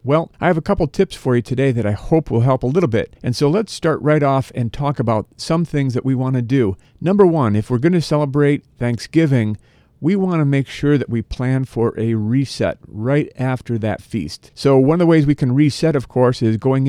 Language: English